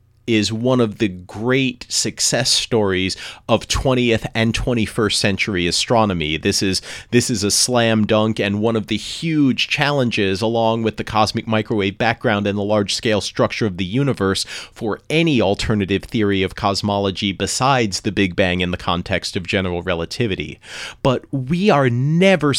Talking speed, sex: 155 wpm, male